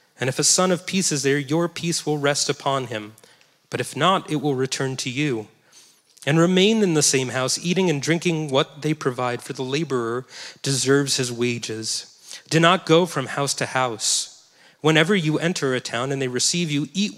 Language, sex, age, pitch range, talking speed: English, male, 30-49, 130-170 Hz, 200 wpm